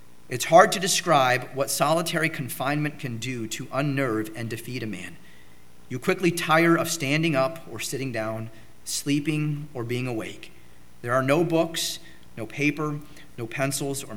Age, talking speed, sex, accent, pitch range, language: 40-59, 155 wpm, male, American, 110-155 Hz, English